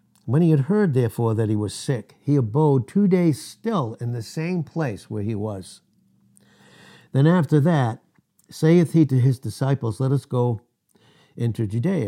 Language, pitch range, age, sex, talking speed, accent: English, 105-135 Hz, 60-79, male, 170 wpm, American